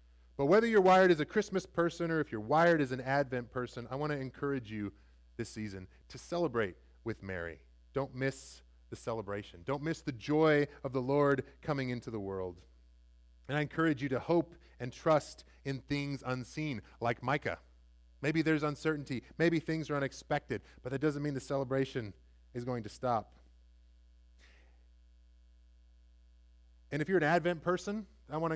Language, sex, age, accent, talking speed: English, male, 30-49, American, 170 wpm